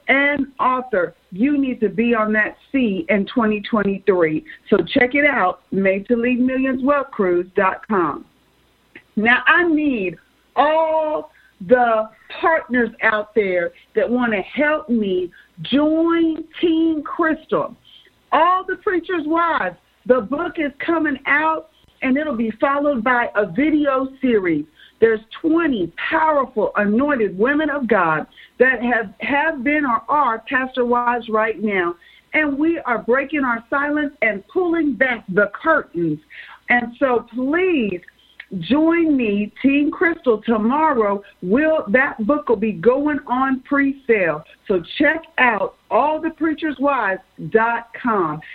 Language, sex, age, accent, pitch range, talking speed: English, female, 50-69, American, 215-300 Hz, 125 wpm